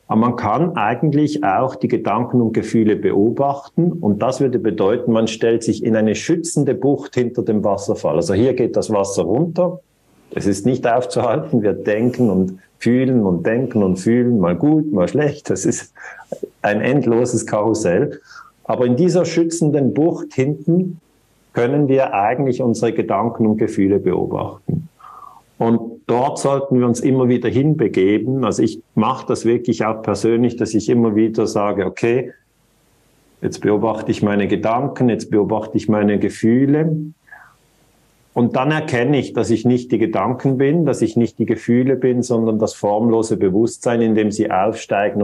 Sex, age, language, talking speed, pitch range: male, 50-69, German, 160 wpm, 110-140 Hz